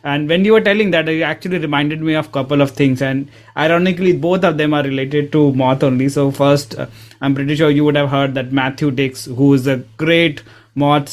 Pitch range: 135-165 Hz